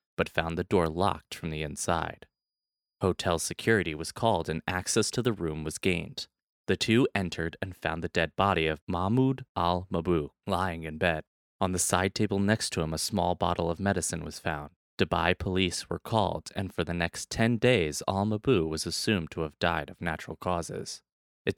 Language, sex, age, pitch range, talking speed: English, male, 20-39, 80-100 Hz, 185 wpm